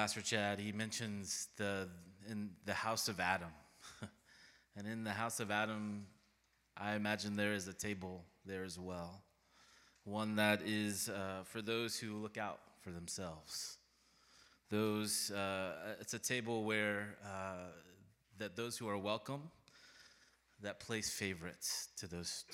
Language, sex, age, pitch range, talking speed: English, male, 20-39, 95-110 Hz, 140 wpm